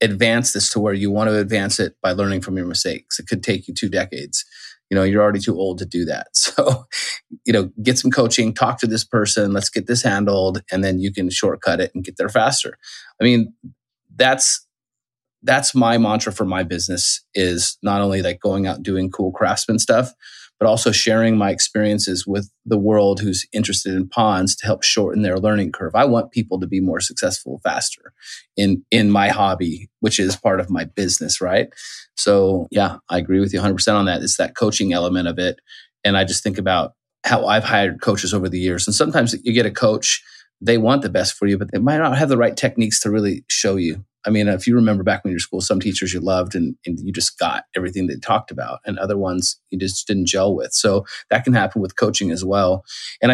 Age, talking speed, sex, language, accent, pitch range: 30-49, 225 wpm, male, English, American, 95-110 Hz